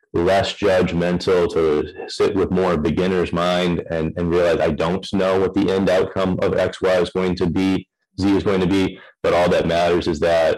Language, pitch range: English, 80-95 Hz